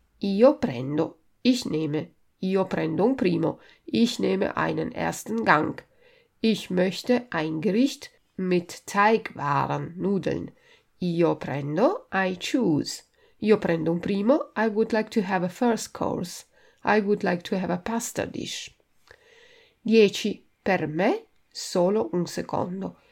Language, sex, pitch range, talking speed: Italian, female, 175-260 Hz, 130 wpm